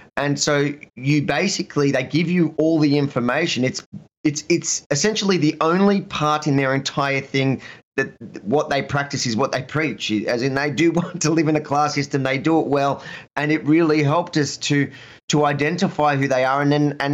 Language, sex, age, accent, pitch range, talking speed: English, male, 20-39, Australian, 140-170 Hz, 205 wpm